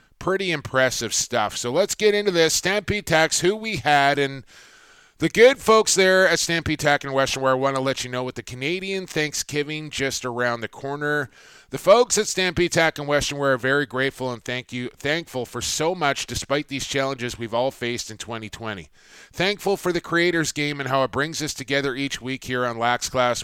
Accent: American